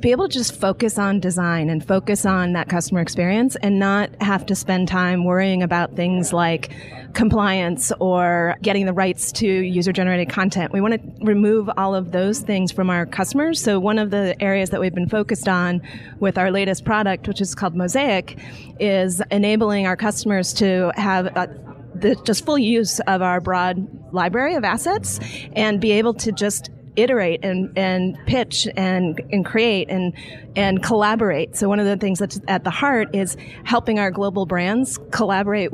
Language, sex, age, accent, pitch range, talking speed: English, female, 30-49, American, 180-205 Hz, 175 wpm